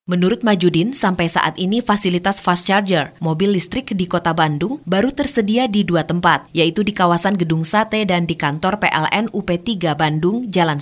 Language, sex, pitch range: Indonesian, female, 145-190 Hz